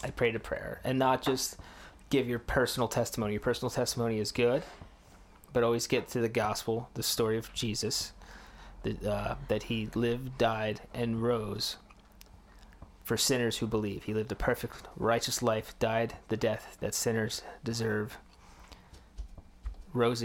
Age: 20-39